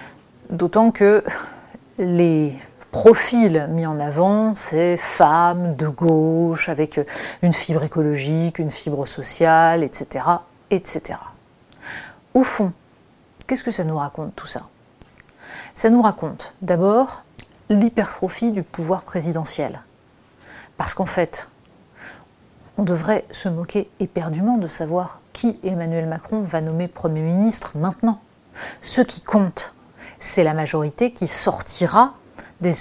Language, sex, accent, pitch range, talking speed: French, female, French, 160-200 Hz, 115 wpm